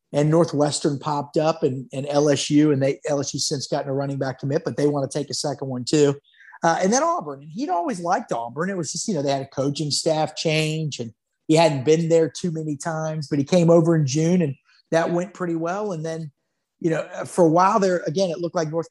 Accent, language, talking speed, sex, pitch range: American, English, 245 wpm, male, 140-170 Hz